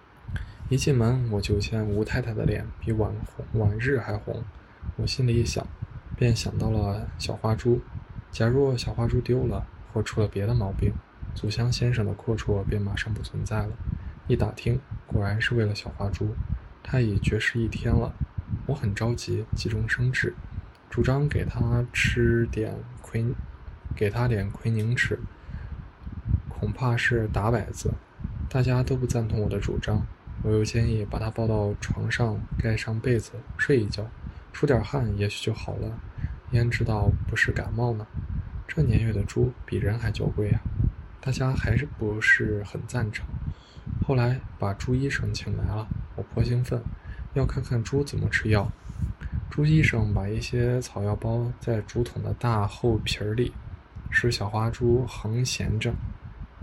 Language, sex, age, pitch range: Chinese, male, 20-39, 105-120 Hz